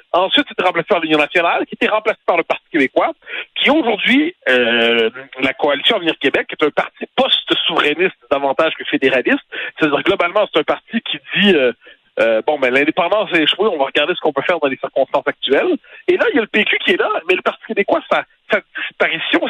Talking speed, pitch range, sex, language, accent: 215 wpm, 145-245 Hz, male, French, French